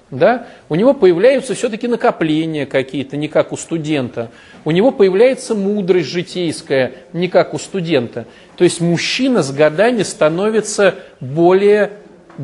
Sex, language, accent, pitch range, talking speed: male, Russian, native, 160-210 Hz, 130 wpm